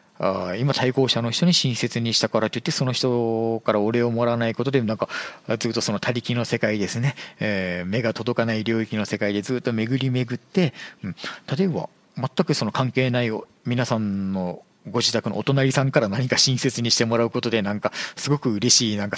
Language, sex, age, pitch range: Japanese, male, 40-59, 115-140 Hz